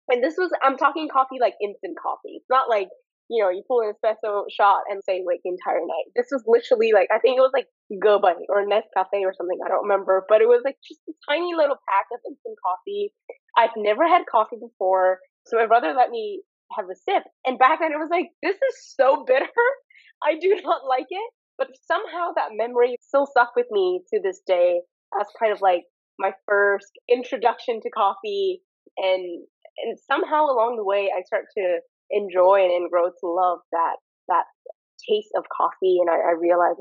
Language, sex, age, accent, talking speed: English, female, 10-29, American, 210 wpm